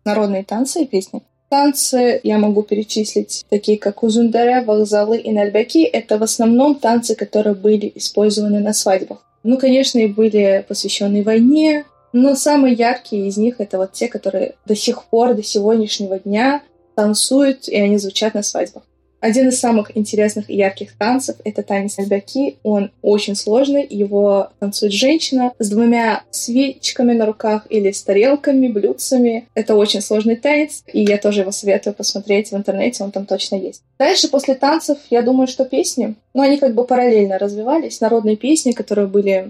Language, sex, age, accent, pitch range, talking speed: Russian, female, 20-39, native, 205-250 Hz, 165 wpm